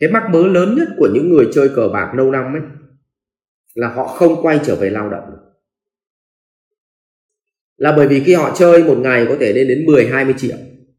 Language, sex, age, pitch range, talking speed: English, male, 20-39, 125-185 Hz, 210 wpm